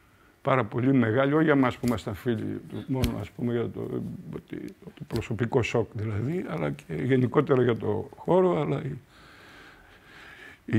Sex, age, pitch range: male, 60-79, 115-150 Hz